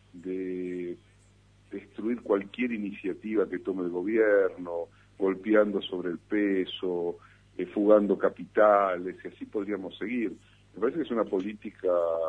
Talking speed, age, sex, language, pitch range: 120 wpm, 70-89, male, Spanish, 90-105 Hz